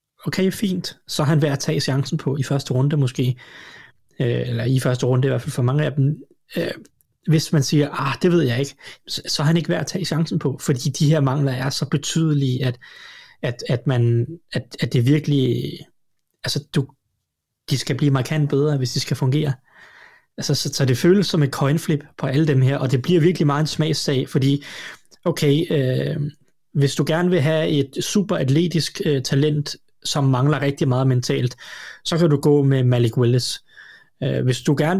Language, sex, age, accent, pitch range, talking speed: Danish, male, 20-39, native, 130-155 Hz, 195 wpm